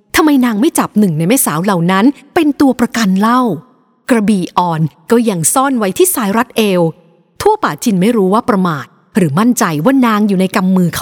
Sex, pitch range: female, 175-245 Hz